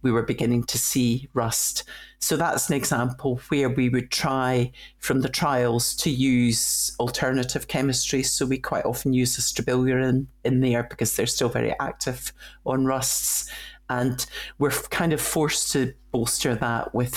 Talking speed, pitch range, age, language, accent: 160 wpm, 120-140 Hz, 60-79, English, British